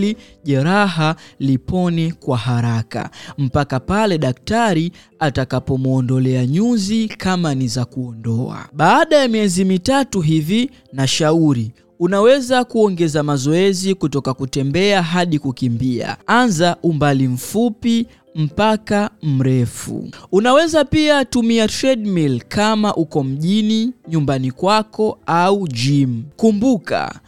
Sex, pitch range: male, 140-215 Hz